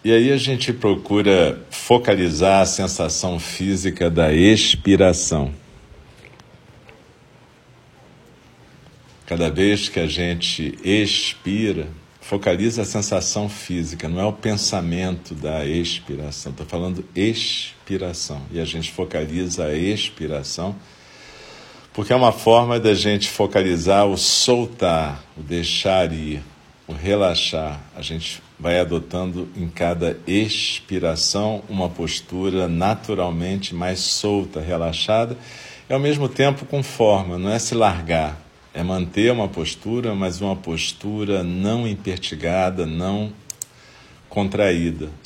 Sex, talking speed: male, 110 wpm